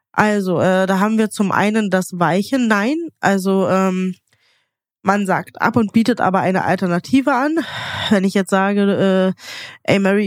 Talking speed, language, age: 165 wpm, German, 20-39